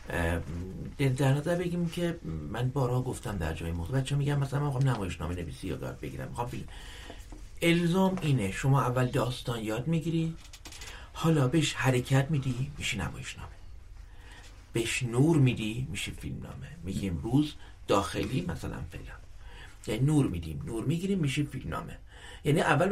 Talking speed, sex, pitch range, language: 140 wpm, male, 95-145 Hz, Persian